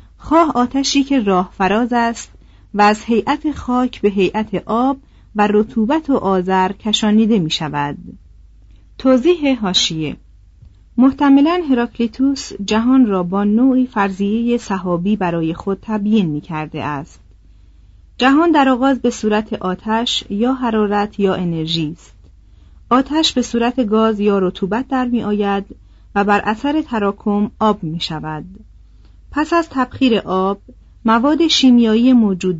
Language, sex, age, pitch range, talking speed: Persian, female, 40-59, 175-245 Hz, 130 wpm